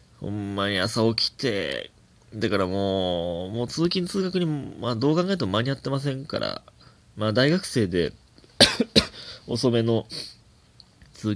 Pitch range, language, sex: 105-140 Hz, Japanese, male